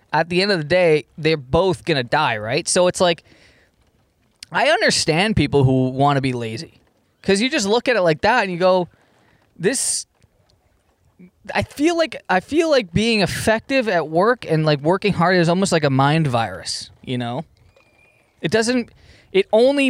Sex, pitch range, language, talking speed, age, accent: male, 155-215 Hz, English, 185 wpm, 20-39, American